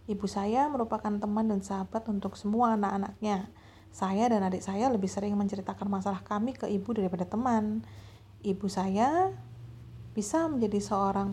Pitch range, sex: 185-215 Hz, female